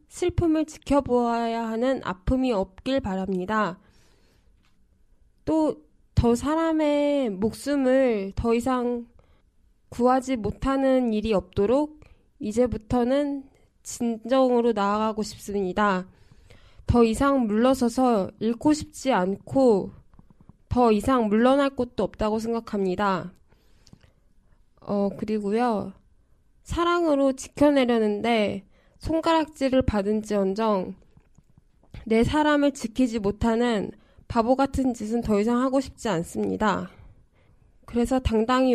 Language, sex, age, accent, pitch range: Korean, female, 10-29, native, 210-265 Hz